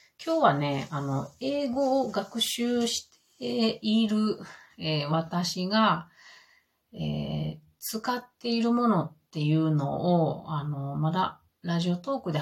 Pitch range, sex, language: 150-215 Hz, female, Japanese